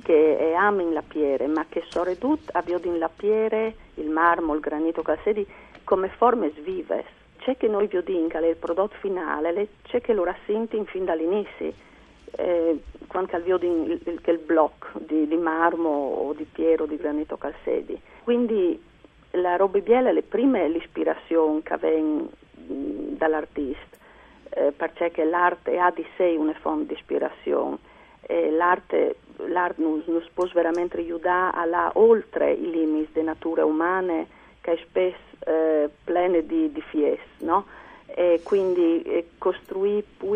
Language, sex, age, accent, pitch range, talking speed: Italian, female, 50-69, native, 165-215 Hz, 145 wpm